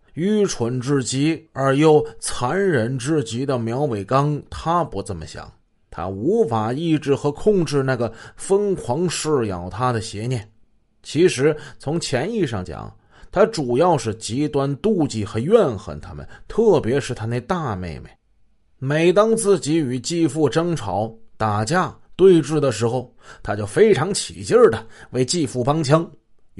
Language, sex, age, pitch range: Chinese, male, 30-49, 110-155 Hz